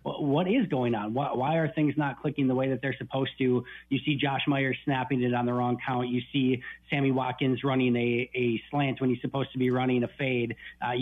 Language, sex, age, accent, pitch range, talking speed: English, male, 30-49, American, 125-140 Hz, 230 wpm